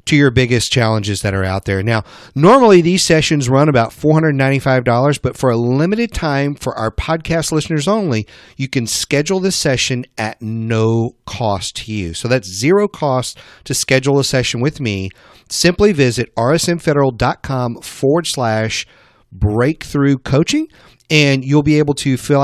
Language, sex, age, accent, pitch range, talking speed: English, male, 40-59, American, 120-160 Hz, 155 wpm